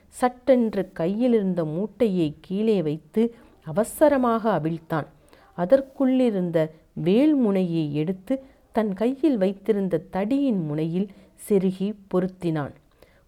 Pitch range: 165-235 Hz